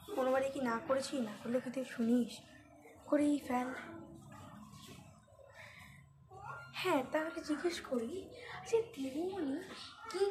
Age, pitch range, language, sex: 20-39, 245-315 Hz, Bengali, female